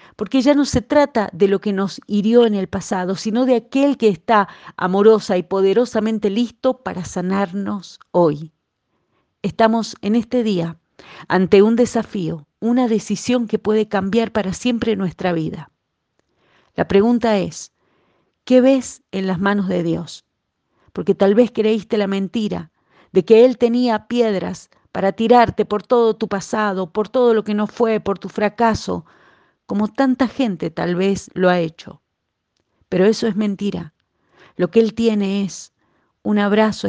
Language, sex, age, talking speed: Spanish, female, 40-59, 155 wpm